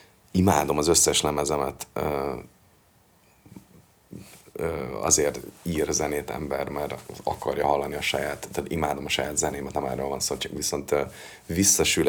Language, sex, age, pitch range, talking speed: Hungarian, male, 30-49, 75-100 Hz, 120 wpm